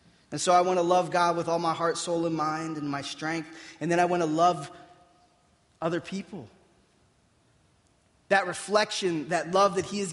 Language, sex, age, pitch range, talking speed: English, male, 20-39, 175-235 Hz, 190 wpm